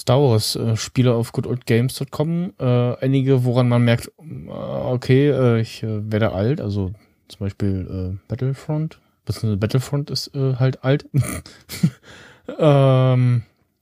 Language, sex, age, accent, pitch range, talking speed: German, male, 20-39, German, 105-130 Hz, 120 wpm